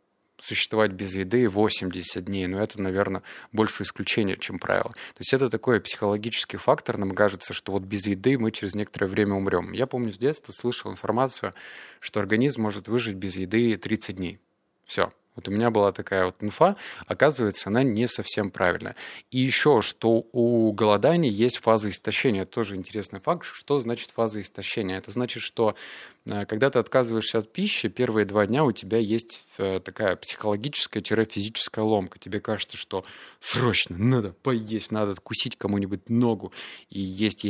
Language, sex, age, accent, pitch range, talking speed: Russian, male, 20-39, native, 100-120 Hz, 160 wpm